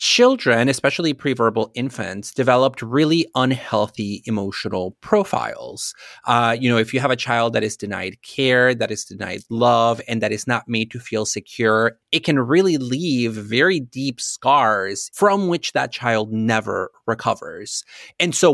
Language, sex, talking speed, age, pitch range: English, male, 155 wpm, 30-49, 110-140 Hz